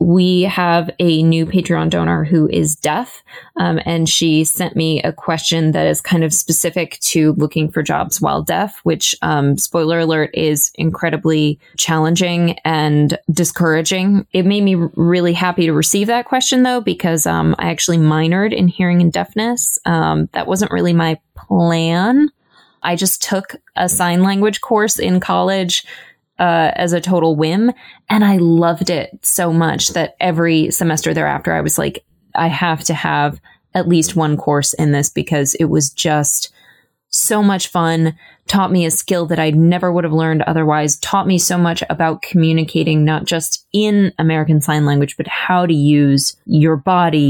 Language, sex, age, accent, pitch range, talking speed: English, female, 20-39, American, 160-185 Hz, 170 wpm